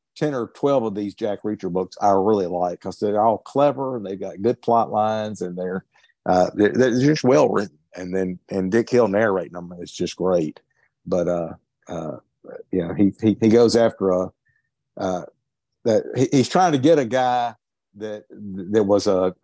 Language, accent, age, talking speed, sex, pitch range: English, American, 50-69, 200 wpm, male, 95-120 Hz